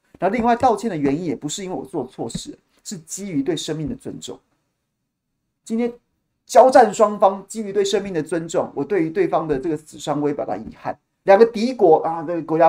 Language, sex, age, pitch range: Chinese, male, 30-49, 150-230 Hz